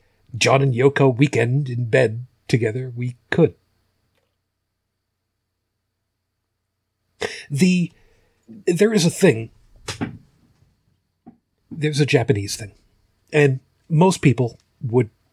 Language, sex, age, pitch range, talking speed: English, male, 40-59, 95-140 Hz, 85 wpm